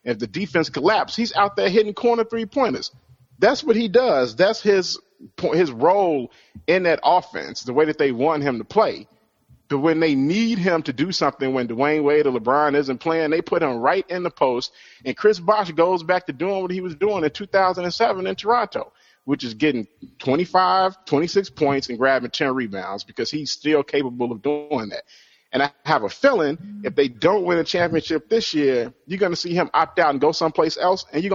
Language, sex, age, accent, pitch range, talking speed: English, male, 40-59, American, 135-200 Hz, 210 wpm